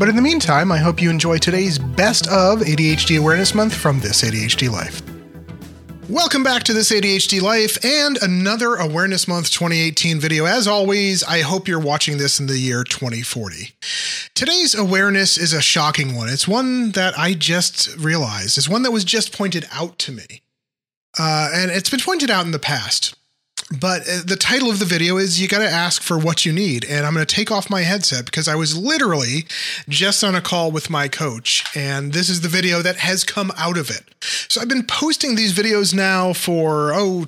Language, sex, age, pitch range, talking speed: English, male, 30-49, 145-195 Hz, 200 wpm